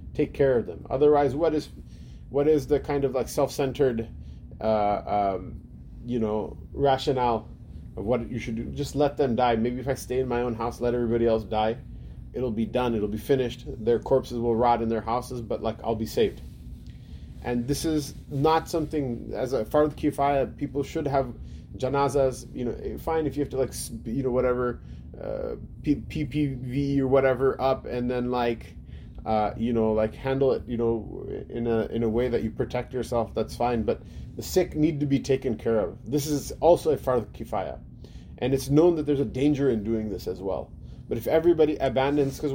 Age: 20-39